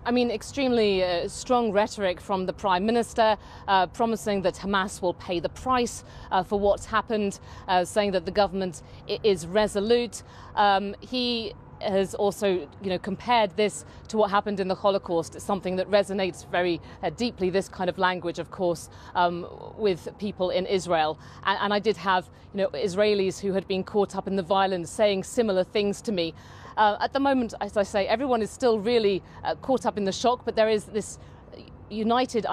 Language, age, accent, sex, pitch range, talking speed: English, 40-59, British, female, 190-220 Hz, 190 wpm